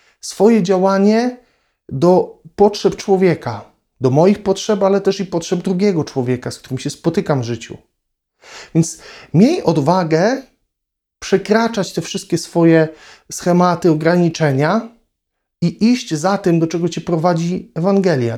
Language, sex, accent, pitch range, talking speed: Polish, male, native, 140-195 Hz, 125 wpm